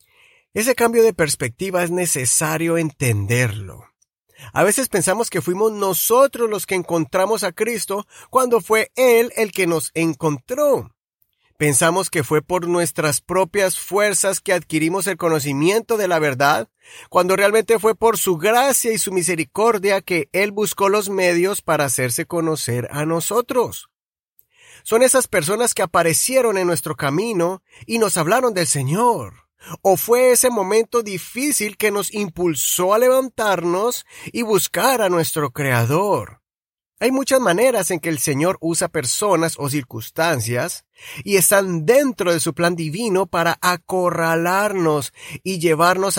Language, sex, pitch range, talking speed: Spanish, male, 155-210 Hz, 140 wpm